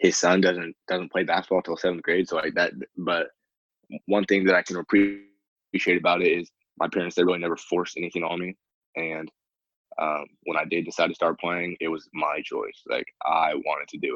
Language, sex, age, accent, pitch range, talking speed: English, male, 20-39, American, 85-100 Hz, 210 wpm